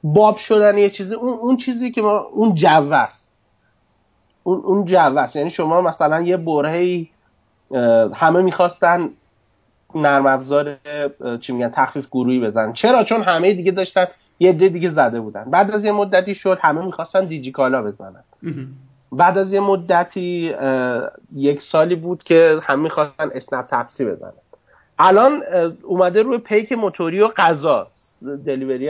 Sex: male